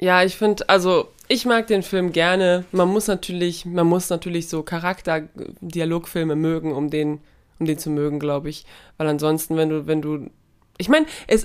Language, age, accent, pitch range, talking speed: German, 20-39, German, 155-180 Hz, 185 wpm